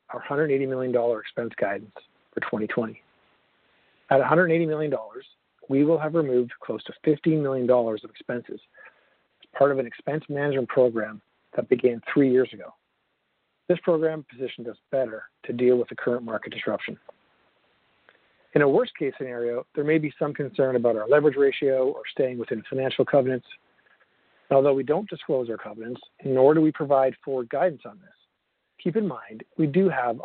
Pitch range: 125-155 Hz